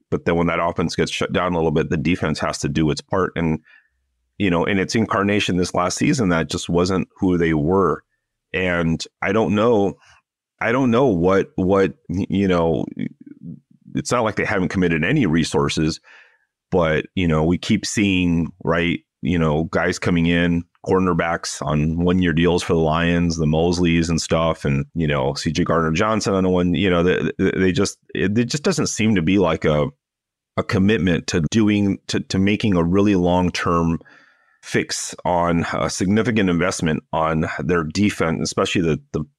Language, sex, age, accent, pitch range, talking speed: English, male, 30-49, American, 80-95 Hz, 185 wpm